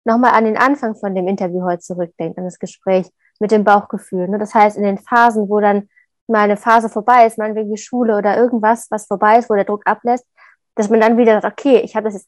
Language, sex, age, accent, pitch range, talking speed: German, female, 20-39, German, 205-240 Hz, 235 wpm